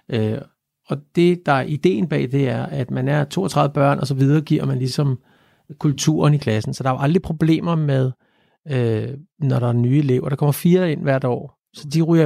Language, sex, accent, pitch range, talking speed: Danish, male, native, 130-165 Hz, 215 wpm